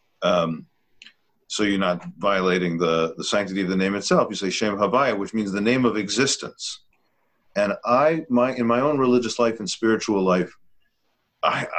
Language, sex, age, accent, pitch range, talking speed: English, male, 50-69, American, 95-125 Hz, 175 wpm